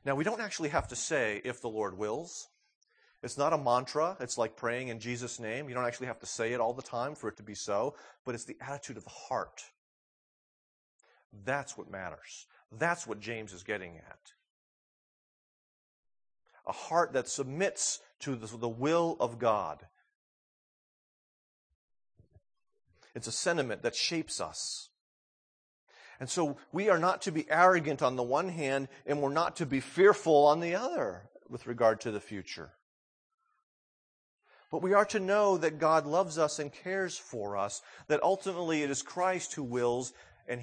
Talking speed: 170 wpm